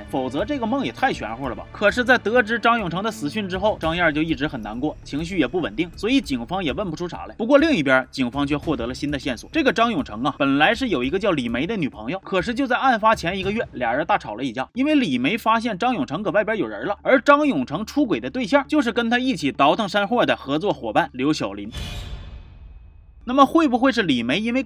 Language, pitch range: Chinese, 160-265 Hz